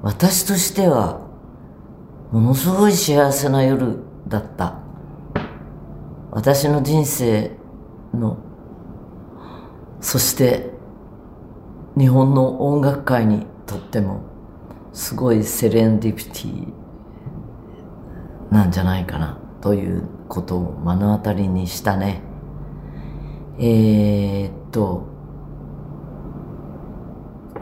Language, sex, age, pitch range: Japanese, female, 40-59, 90-115 Hz